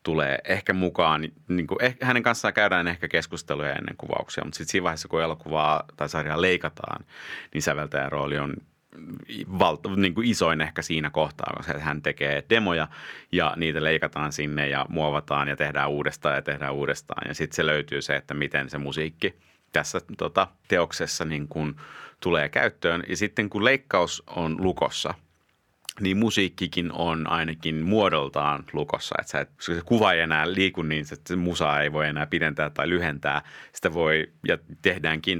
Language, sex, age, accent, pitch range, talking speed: Finnish, male, 30-49, native, 75-90 Hz, 170 wpm